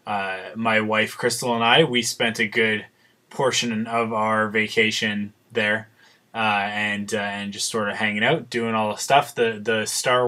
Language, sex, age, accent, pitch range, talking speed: English, male, 20-39, American, 110-125 Hz, 180 wpm